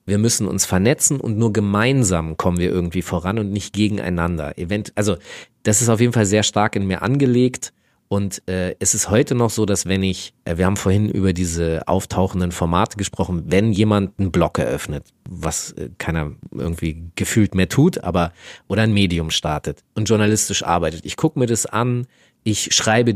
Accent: German